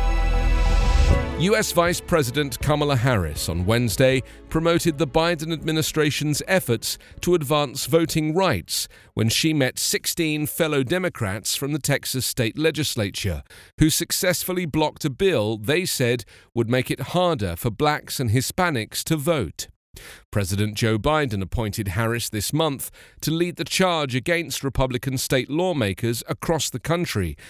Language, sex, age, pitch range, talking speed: English, male, 40-59, 110-160 Hz, 135 wpm